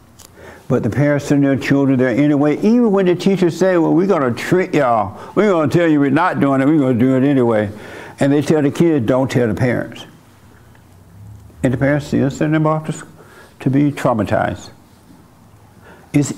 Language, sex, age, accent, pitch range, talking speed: English, male, 60-79, American, 120-155 Hz, 200 wpm